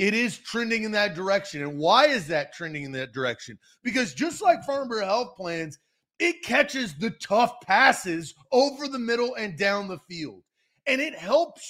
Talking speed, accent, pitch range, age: 185 wpm, American, 170-235 Hz, 30-49